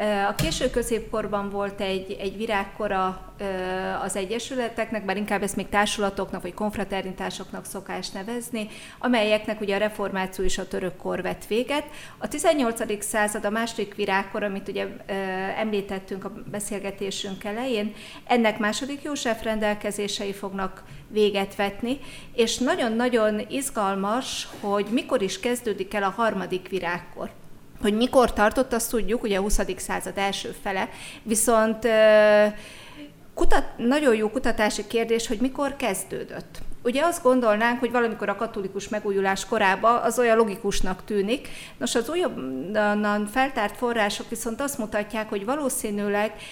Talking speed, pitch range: 130 wpm, 195-230 Hz